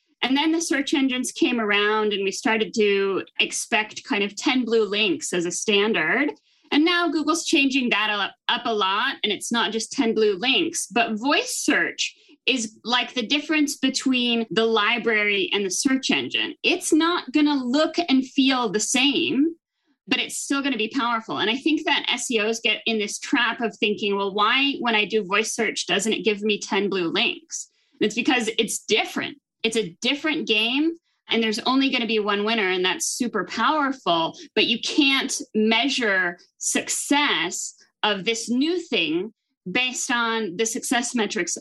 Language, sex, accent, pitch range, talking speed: English, female, American, 215-290 Hz, 175 wpm